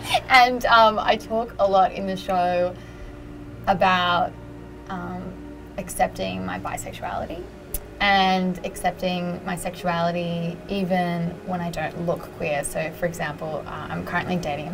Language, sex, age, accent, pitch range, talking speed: English, female, 20-39, Australian, 170-200 Hz, 130 wpm